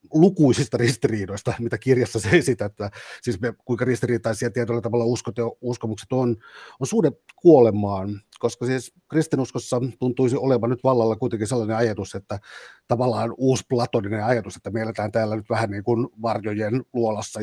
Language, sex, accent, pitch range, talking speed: Finnish, male, native, 105-125 Hz, 155 wpm